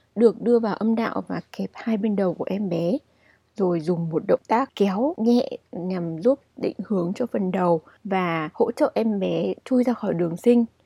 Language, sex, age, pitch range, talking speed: Vietnamese, female, 20-39, 190-245 Hz, 205 wpm